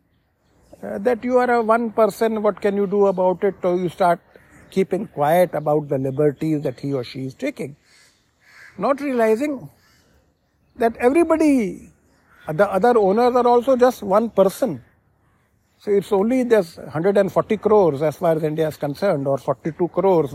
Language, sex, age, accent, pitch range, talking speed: English, male, 50-69, Indian, 150-230 Hz, 160 wpm